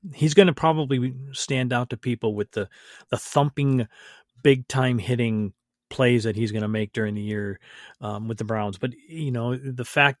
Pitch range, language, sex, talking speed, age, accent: 110-135 Hz, English, male, 195 wpm, 40-59, American